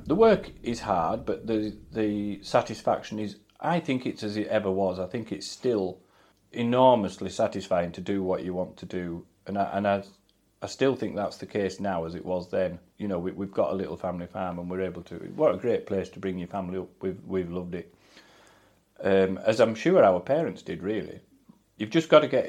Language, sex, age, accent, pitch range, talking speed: English, male, 40-59, British, 95-115 Hz, 220 wpm